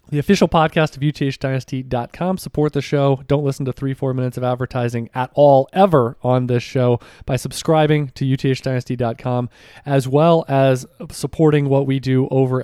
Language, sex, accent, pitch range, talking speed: English, male, American, 130-155 Hz, 160 wpm